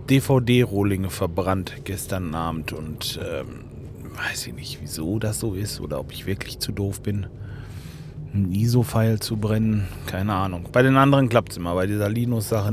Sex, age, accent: male, 30-49, German